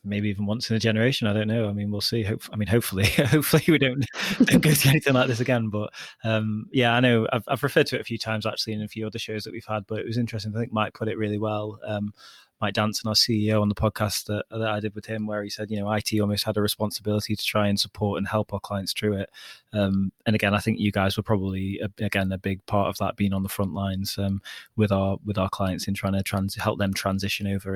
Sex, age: male, 20-39